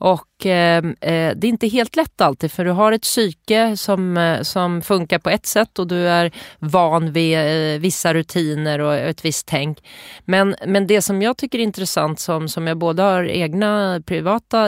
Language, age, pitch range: English, 30-49, 165-205 Hz